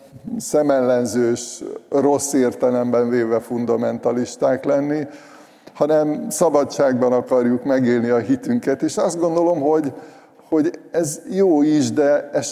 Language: Hungarian